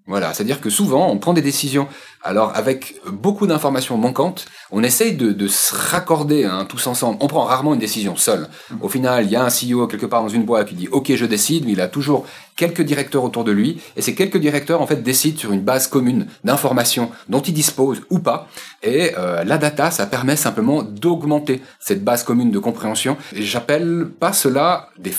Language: French